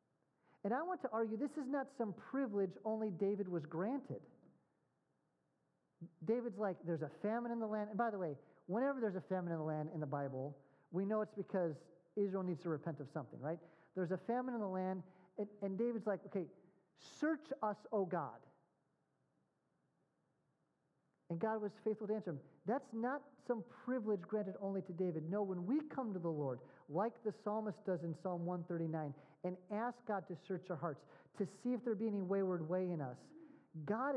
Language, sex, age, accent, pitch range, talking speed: English, male, 40-59, American, 180-245 Hz, 190 wpm